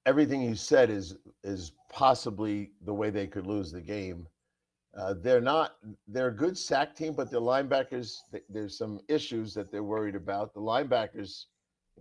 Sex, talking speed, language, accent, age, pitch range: male, 170 wpm, English, American, 50-69, 95-125 Hz